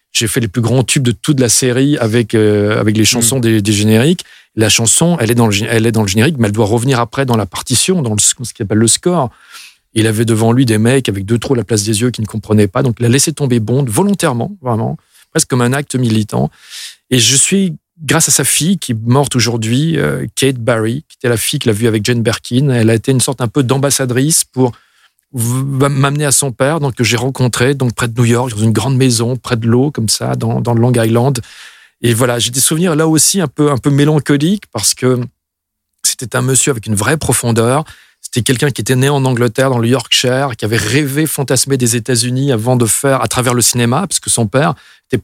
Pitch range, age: 115-140 Hz, 40-59